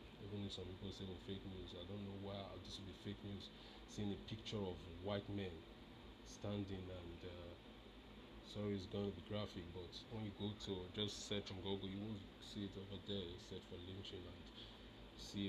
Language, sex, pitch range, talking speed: English, male, 95-110 Hz, 195 wpm